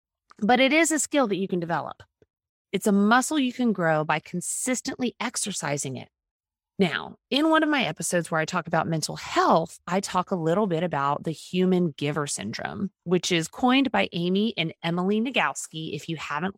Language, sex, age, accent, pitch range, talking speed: English, female, 30-49, American, 165-230 Hz, 190 wpm